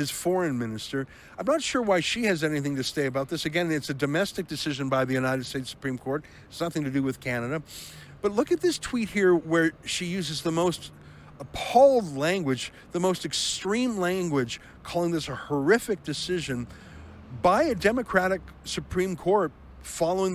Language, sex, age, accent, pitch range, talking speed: English, male, 50-69, American, 145-190 Hz, 170 wpm